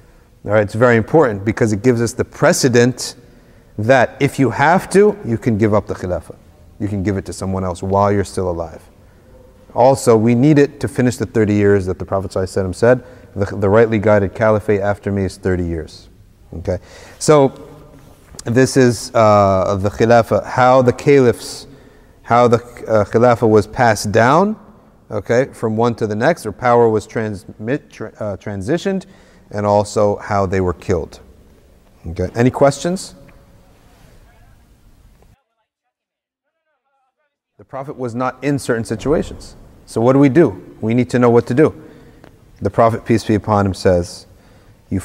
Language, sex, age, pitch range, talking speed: English, male, 40-59, 100-130 Hz, 160 wpm